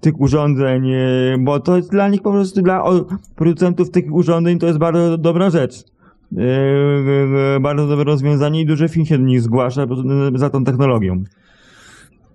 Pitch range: 130-165 Hz